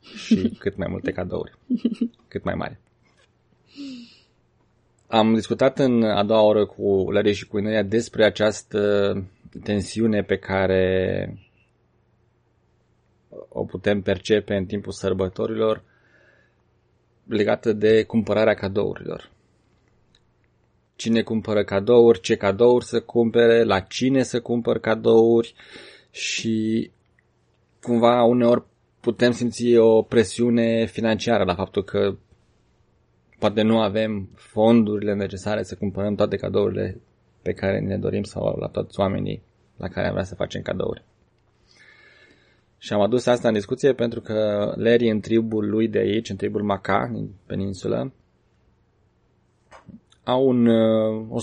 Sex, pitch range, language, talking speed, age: male, 105-120 Hz, Romanian, 120 wpm, 20-39